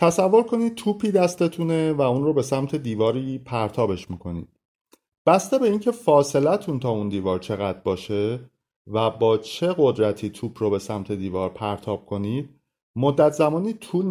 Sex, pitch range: male, 105-160 Hz